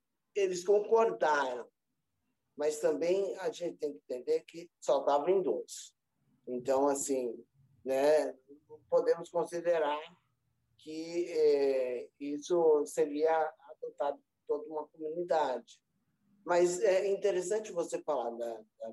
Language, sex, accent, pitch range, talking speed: Portuguese, male, Brazilian, 140-180 Hz, 110 wpm